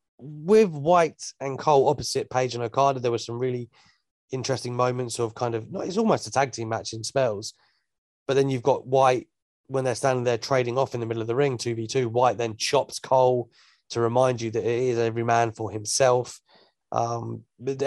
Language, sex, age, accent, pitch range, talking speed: English, male, 30-49, British, 115-140 Hz, 200 wpm